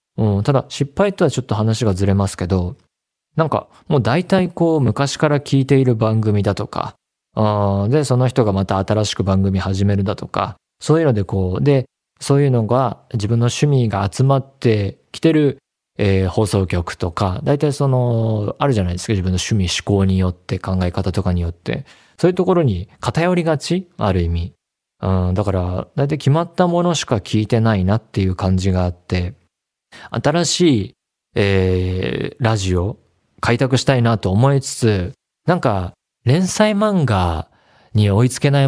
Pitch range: 95-140 Hz